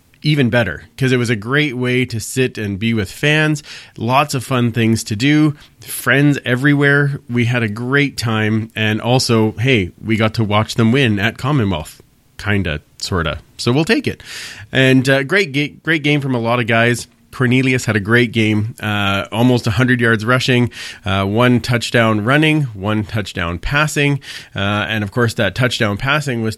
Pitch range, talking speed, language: 110-130 Hz, 185 wpm, English